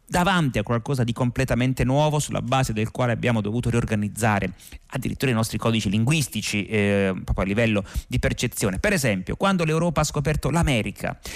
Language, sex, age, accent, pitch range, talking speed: Italian, male, 30-49, native, 115-155 Hz, 165 wpm